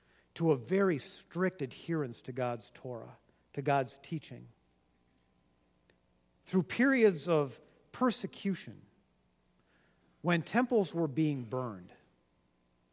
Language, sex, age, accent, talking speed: English, male, 50-69, American, 95 wpm